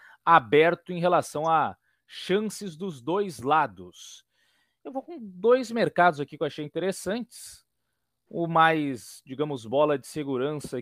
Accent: Brazilian